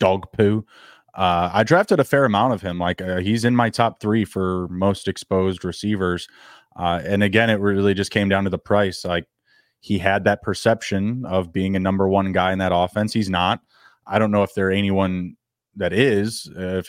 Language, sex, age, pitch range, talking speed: English, male, 20-39, 95-110 Hz, 205 wpm